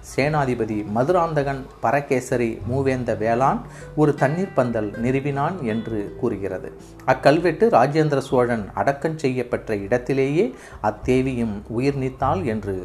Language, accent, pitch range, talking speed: Tamil, native, 115-145 Hz, 105 wpm